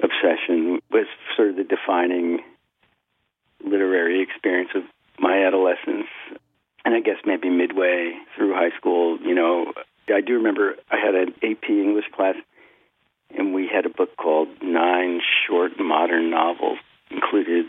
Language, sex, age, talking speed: English, male, 50-69, 140 wpm